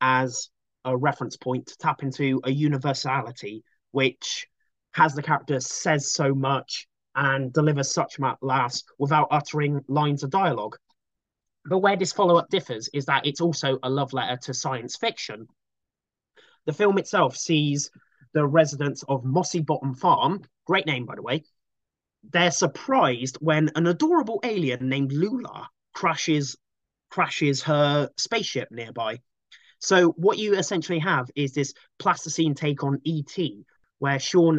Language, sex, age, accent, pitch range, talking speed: English, male, 30-49, British, 130-165 Hz, 140 wpm